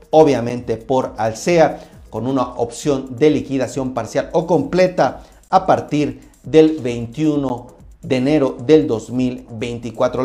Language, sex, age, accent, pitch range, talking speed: Spanish, male, 40-59, Mexican, 125-160 Hz, 110 wpm